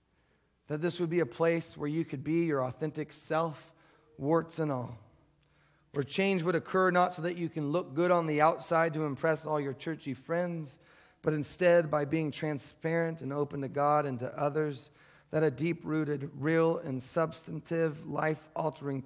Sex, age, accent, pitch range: male, 40-59, American, 145-175 Hz